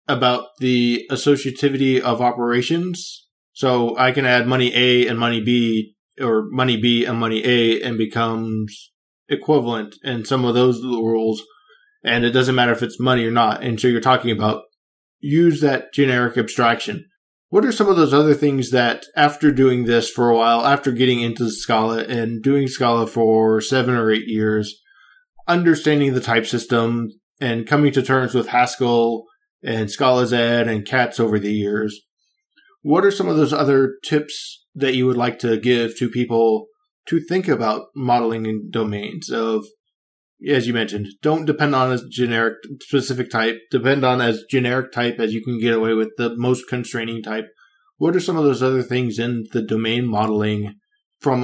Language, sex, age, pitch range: English, male, 20-39, 115-135 Hz